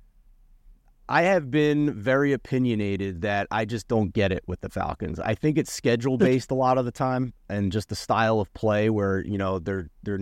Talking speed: 200 wpm